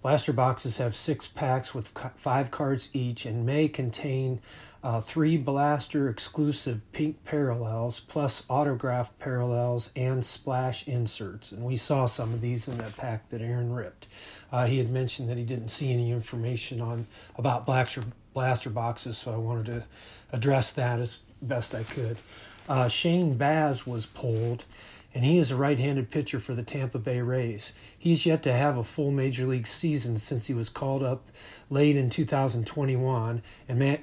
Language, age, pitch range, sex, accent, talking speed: English, 40-59, 115-140 Hz, male, American, 165 wpm